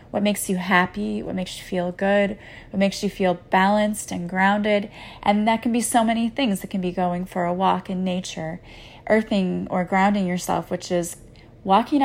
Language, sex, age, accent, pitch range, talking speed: English, female, 30-49, American, 180-210 Hz, 195 wpm